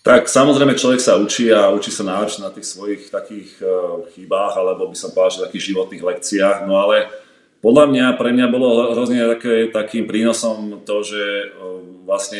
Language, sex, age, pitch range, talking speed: Slovak, male, 30-49, 95-115 Hz, 170 wpm